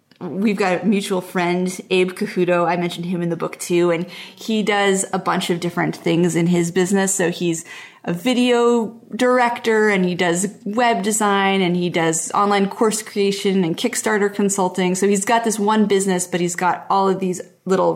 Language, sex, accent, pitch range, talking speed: English, female, American, 180-225 Hz, 190 wpm